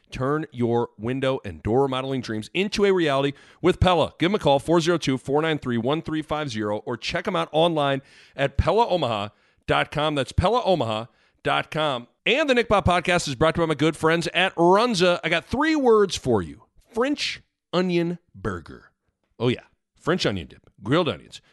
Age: 40-59